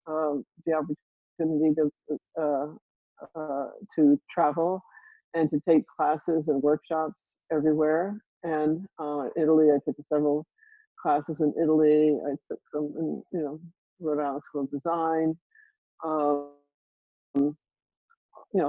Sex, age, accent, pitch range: female, 60-79, American, 145-170 Hz